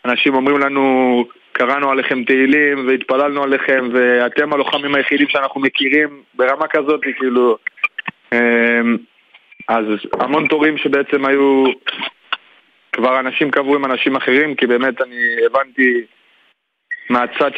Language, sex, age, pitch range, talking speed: Hebrew, male, 20-39, 120-145 Hz, 110 wpm